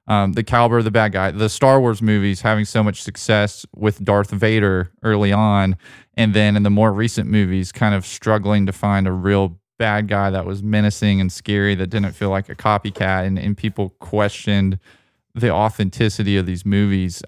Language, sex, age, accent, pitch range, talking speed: English, male, 20-39, American, 95-110 Hz, 195 wpm